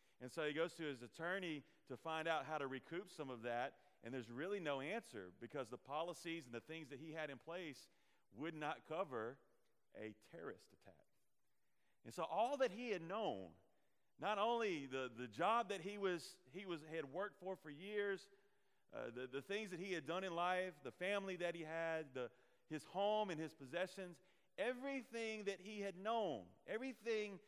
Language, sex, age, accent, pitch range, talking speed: English, male, 40-59, American, 140-205 Hz, 190 wpm